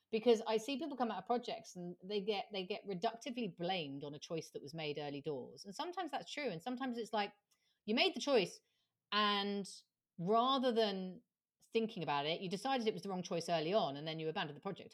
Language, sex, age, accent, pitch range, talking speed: English, female, 40-59, British, 170-230 Hz, 225 wpm